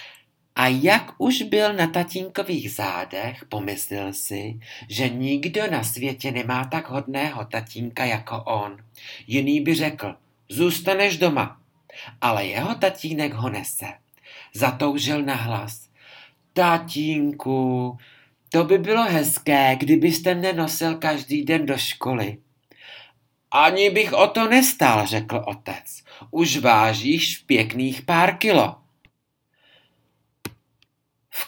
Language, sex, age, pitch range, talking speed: Czech, male, 50-69, 115-165 Hz, 110 wpm